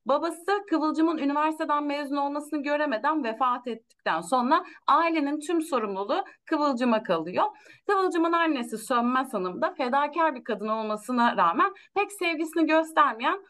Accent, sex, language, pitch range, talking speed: native, female, Turkish, 245-325 Hz, 120 wpm